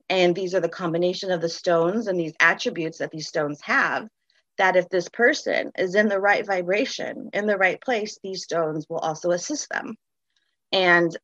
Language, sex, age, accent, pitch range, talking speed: English, female, 30-49, American, 175-215 Hz, 185 wpm